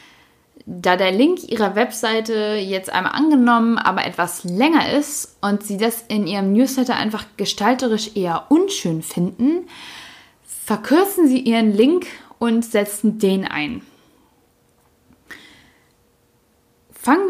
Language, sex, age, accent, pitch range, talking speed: German, female, 10-29, German, 190-250 Hz, 110 wpm